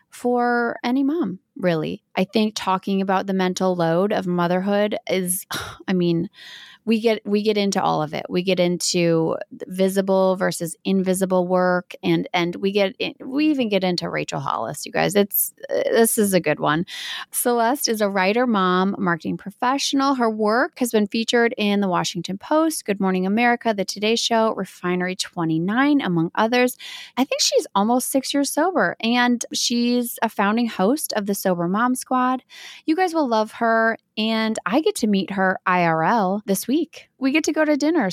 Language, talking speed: English, 175 wpm